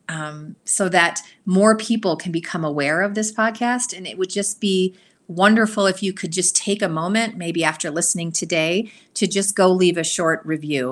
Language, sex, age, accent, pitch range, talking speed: English, female, 30-49, American, 165-210 Hz, 190 wpm